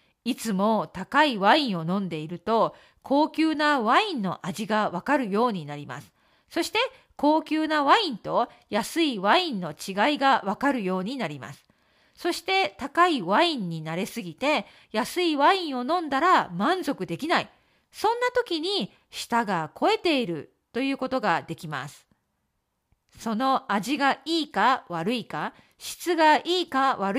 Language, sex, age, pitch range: Japanese, female, 40-59, 205-325 Hz